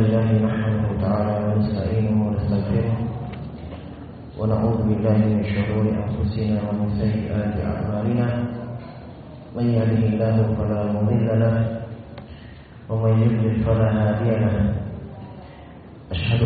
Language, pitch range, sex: Indonesian, 110-115 Hz, male